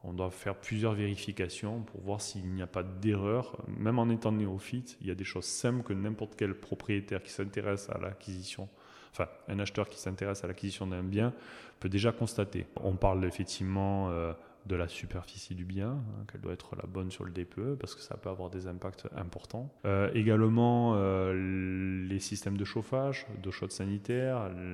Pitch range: 95-115 Hz